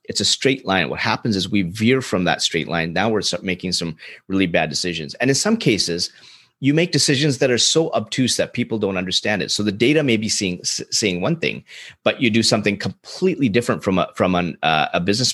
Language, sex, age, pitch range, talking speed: English, male, 30-49, 90-120 Hz, 225 wpm